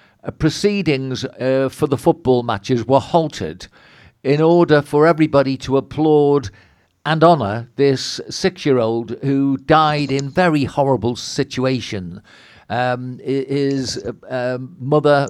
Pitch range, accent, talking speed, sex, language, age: 125-145 Hz, British, 115 wpm, male, English, 50-69